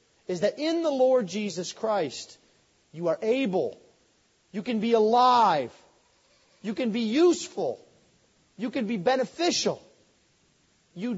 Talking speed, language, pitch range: 125 wpm, English, 195-255 Hz